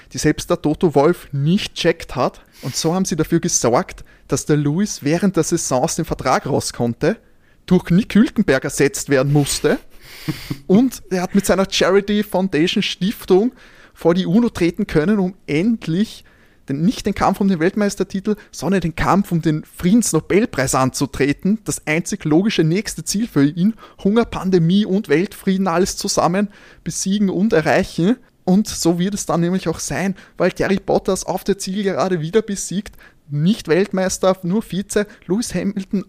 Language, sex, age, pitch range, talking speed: German, male, 20-39, 155-200 Hz, 165 wpm